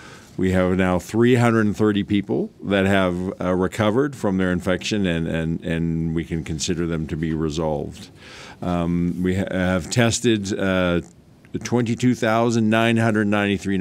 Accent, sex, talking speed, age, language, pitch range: American, male, 120 wpm, 50-69, English, 90-105 Hz